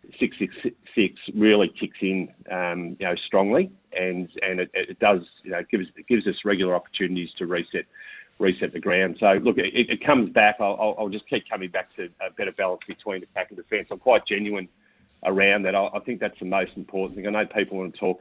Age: 40-59